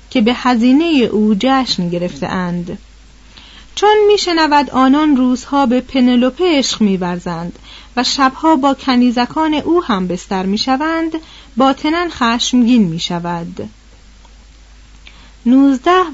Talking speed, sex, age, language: 100 wpm, female, 40-59, Persian